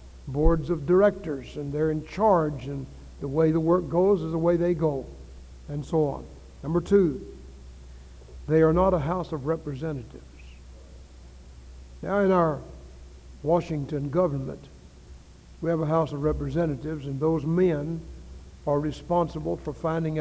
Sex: male